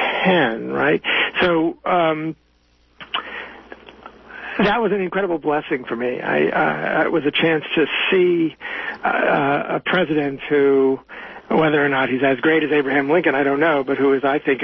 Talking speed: 160 wpm